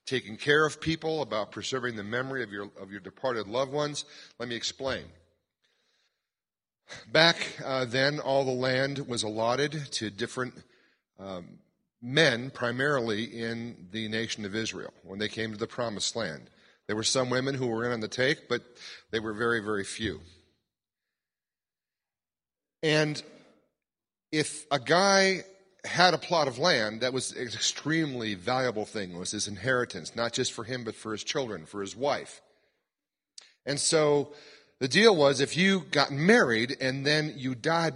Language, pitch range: English, 115-145 Hz